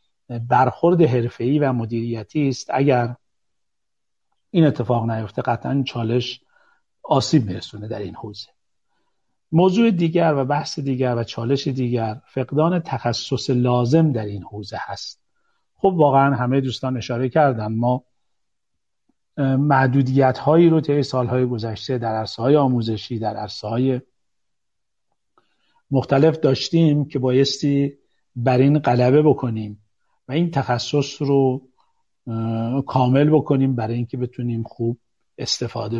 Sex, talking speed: male, 110 wpm